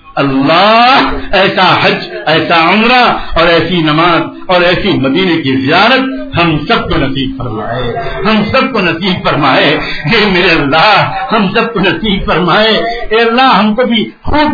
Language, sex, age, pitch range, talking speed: English, male, 50-69, 150-225 Hz, 155 wpm